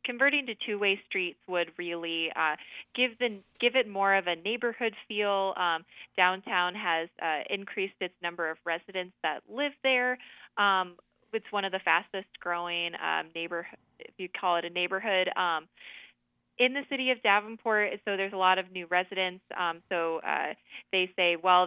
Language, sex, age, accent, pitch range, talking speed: English, female, 20-39, American, 170-200 Hz, 170 wpm